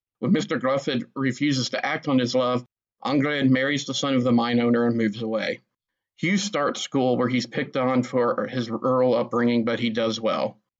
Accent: American